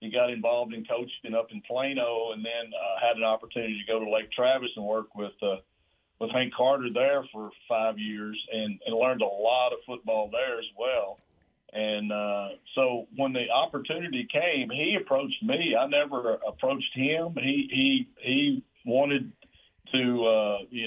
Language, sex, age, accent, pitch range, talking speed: English, male, 50-69, American, 110-140 Hz, 175 wpm